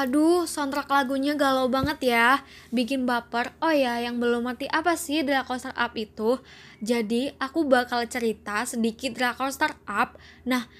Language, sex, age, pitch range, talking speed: Indonesian, female, 10-29, 230-275 Hz, 155 wpm